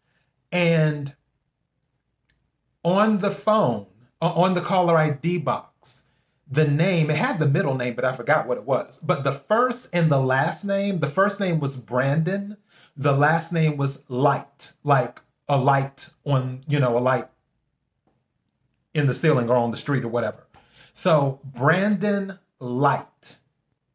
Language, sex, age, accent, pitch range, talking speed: English, male, 30-49, American, 135-175 Hz, 150 wpm